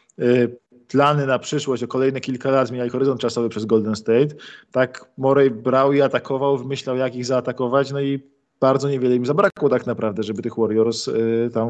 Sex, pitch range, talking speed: male, 120-145 Hz, 185 wpm